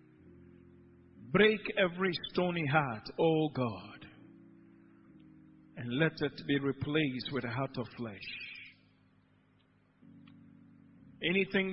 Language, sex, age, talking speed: English, male, 50-69, 85 wpm